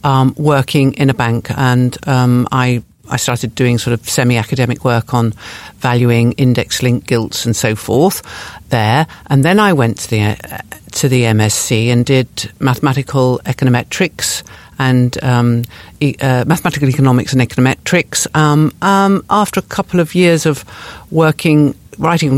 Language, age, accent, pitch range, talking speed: English, 50-69, British, 120-145 Hz, 155 wpm